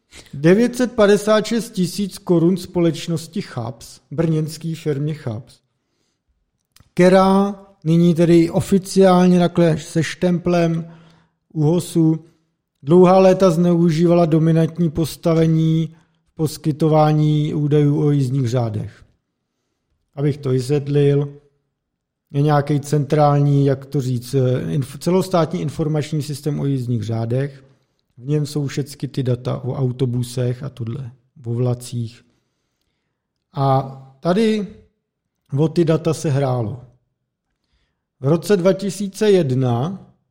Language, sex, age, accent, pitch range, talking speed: Czech, male, 50-69, native, 135-175 Hz, 95 wpm